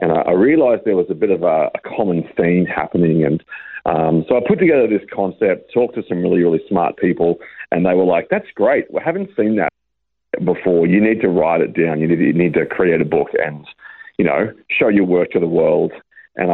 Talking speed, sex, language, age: 230 wpm, male, English, 40-59